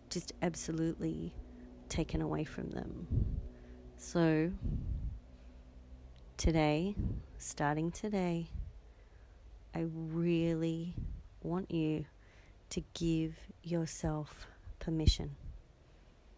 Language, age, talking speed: English, 30-49, 65 wpm